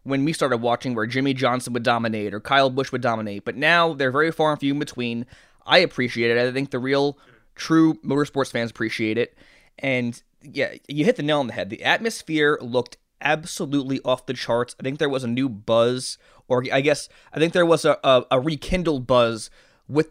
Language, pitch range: English, 120-145 Hz